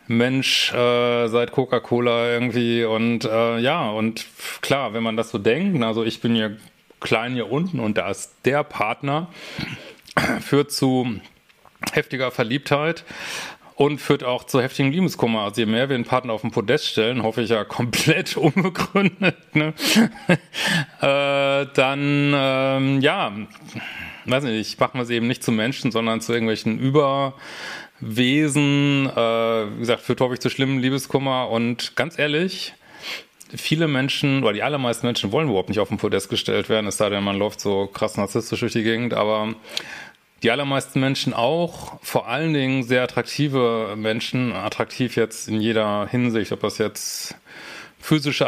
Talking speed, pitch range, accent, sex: 160 wpm, 115-140 Hz, German, male